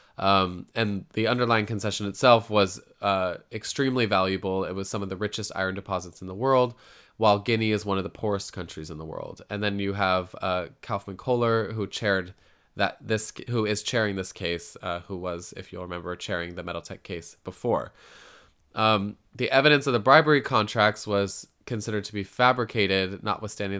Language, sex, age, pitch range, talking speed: English, male, 20-39, 95-110 Hz, 180 wpm